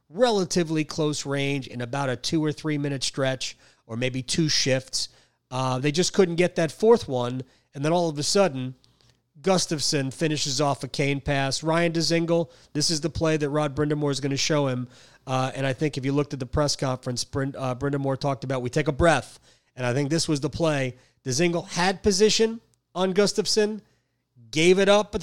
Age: 30-49